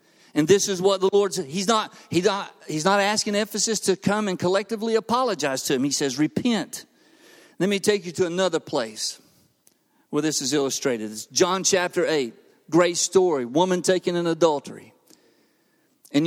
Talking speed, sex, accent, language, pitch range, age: 160 wpm, male, American, English, 175-230 Hz, 50-69